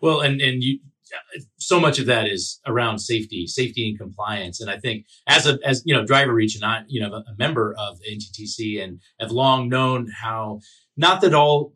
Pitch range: 105-130 Hz